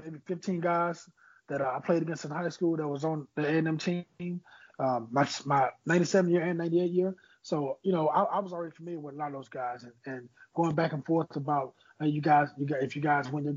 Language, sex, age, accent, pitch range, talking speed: English, male, 20-39, American, 145-170 Hz, 245 wpm